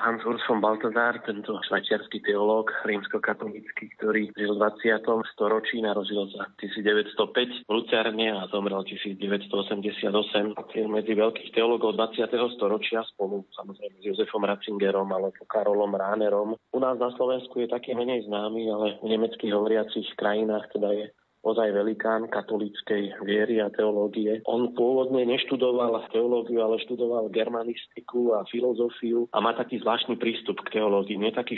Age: 30-49